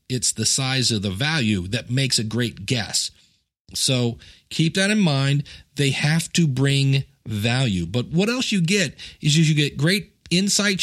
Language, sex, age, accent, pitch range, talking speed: English, male, 40-59, American, 130-170 Hz, 170 wpm